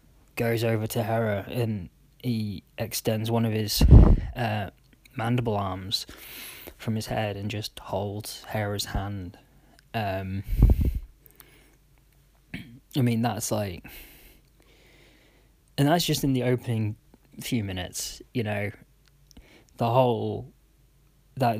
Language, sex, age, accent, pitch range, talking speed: English, male, 20-39, British, 100-120 Hz, 110 wpm